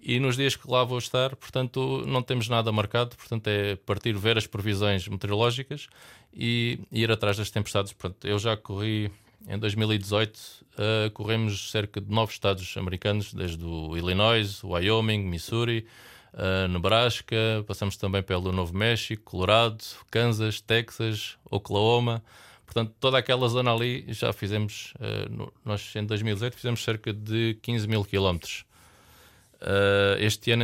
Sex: male